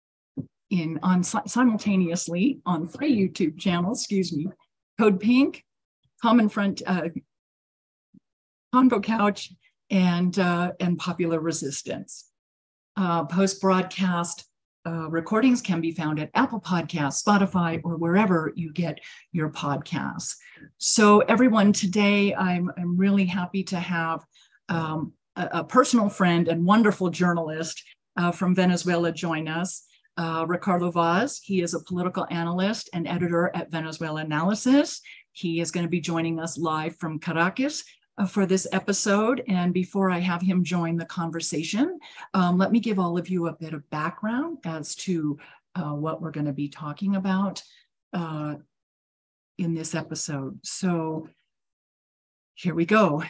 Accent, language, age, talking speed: American, English, 50-69, 140 wpm